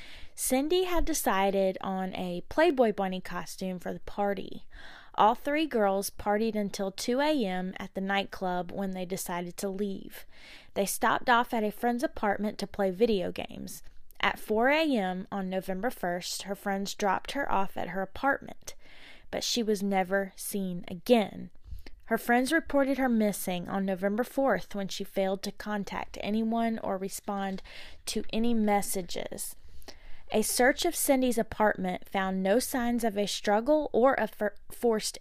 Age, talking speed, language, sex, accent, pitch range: 20-39, 155 wpm, English, female, American, 195-240 Hz